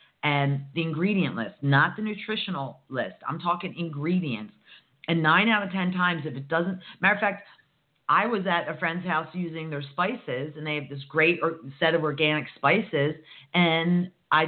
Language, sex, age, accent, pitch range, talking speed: English, female, 40-59, American, 145-185 Hz, 180 wpm